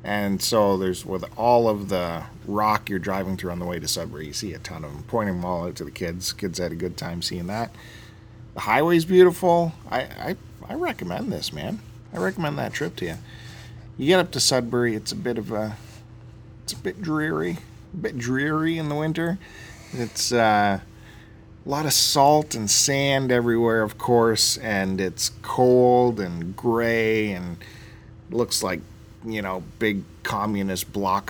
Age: 40-59